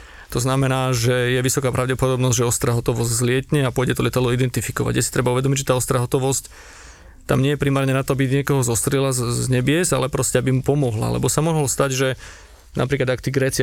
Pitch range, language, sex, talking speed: 125-140 Hz, Slovak, male, 210 wpm